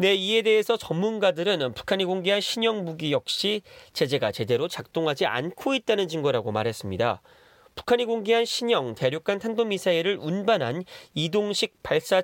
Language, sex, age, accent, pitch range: Korean, male, 30-49, native, 145-225 Hz